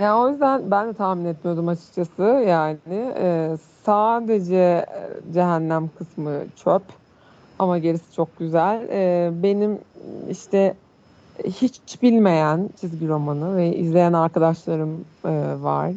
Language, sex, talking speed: Turkish, female, 100 wpm